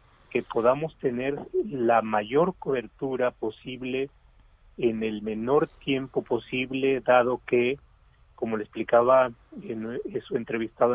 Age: 40-59